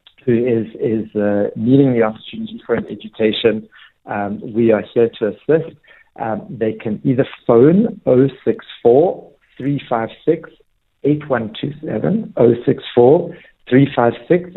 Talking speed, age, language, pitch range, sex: 100 wpm, 60-79, English, 110-135 Hz, male